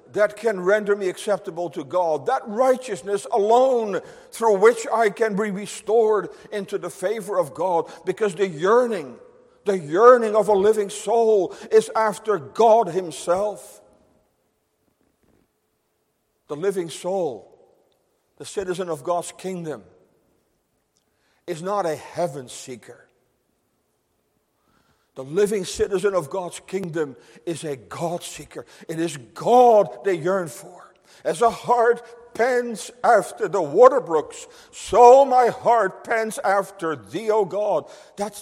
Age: 50-69